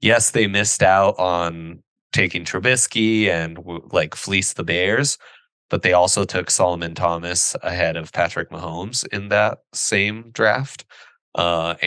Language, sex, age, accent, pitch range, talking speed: English, male, 20-39, American, 90-120 Hz, 135 wpm